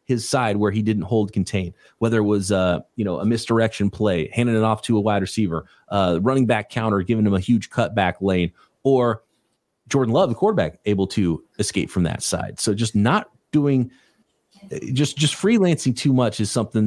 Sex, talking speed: male, 195 wpm